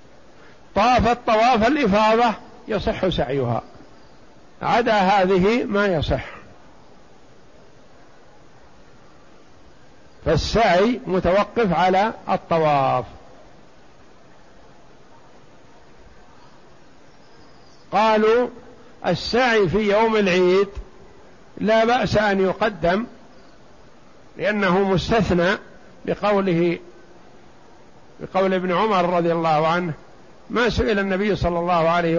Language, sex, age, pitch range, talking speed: Arabic, male, 50-69, 175-215 Hz, 70 wpm